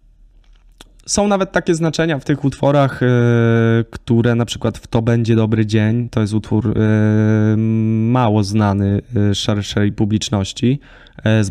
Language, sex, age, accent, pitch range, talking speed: Polish, male, 20-39, native, 105-125 Hz, 120 wpm